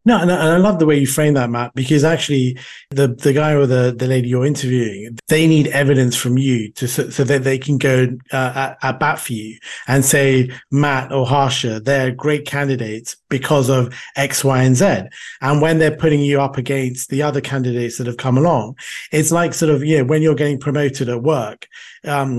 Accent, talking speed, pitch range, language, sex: British, 210 wpm, 130-150 Hz, English, male